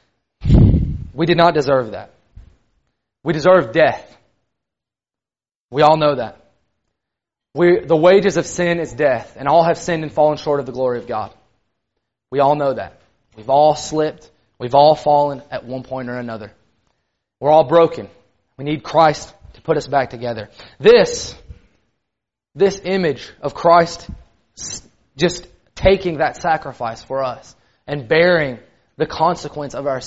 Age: 20-39